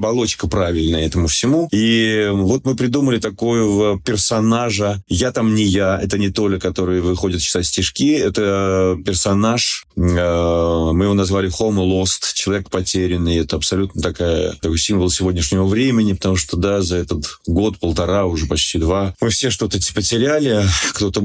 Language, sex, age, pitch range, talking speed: English, male, 30-49, 90-110 Hz, 145 wpm